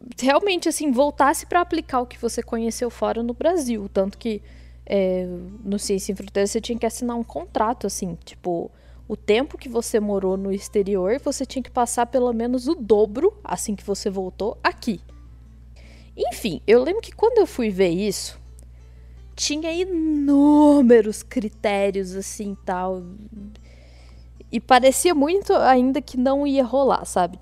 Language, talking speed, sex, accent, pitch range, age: Portuguese, 150 wpm, female, Brazilian, 185-265 Hz, 20-39